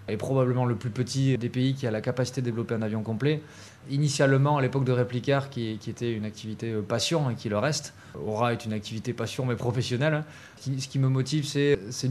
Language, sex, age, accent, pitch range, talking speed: French, male, 20-39, French, 115-135 Hz, 230 wpm